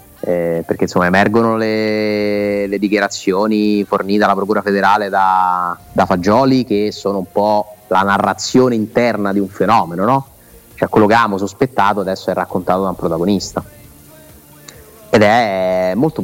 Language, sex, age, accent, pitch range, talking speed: Italian, male, 30-49, native, 95-115 Hz, 145 wpm